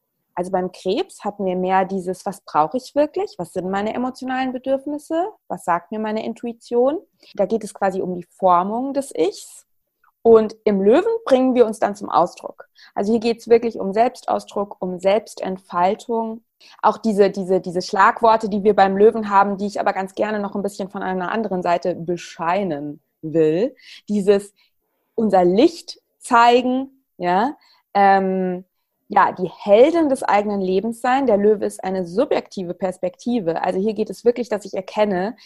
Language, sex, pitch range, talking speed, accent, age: German, female, 190-240 Hz, 170 wpm, German, 20-39